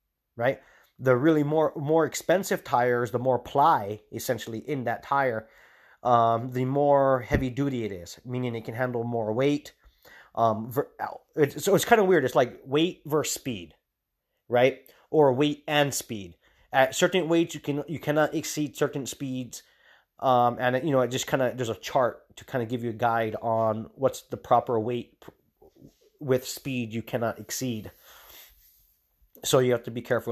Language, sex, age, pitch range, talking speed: English, male, 30-49, 110-140 Hz, 175 wpm